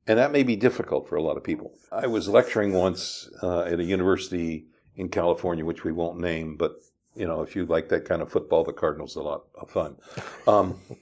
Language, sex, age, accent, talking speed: English, male, 60-79, American, 230 wpm